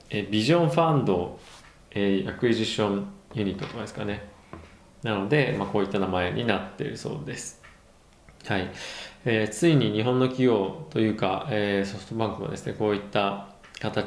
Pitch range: 100-145 Hz